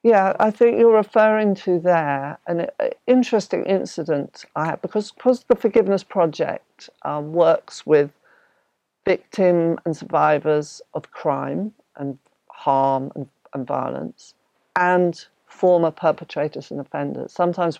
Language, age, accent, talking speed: English, 50-69, British, 125 wpm